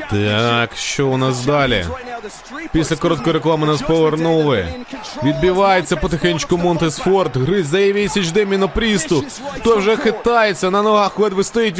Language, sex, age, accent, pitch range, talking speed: Ukrainian, male, 30-49, native, 160-220 Hz, 125 wpm